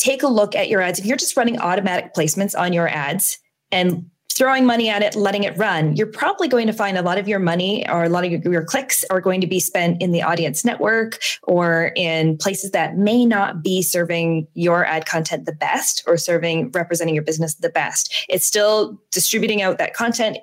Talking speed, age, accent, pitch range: 220 wpm, 20-39, American, 170-230 Hz